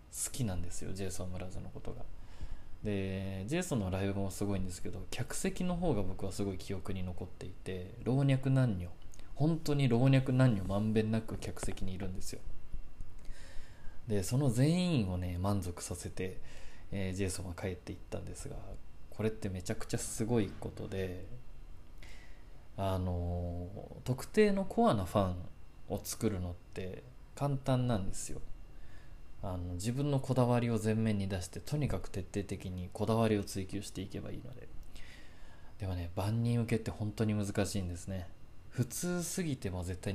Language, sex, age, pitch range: Japanese, male, 20-39, 90-115 Hz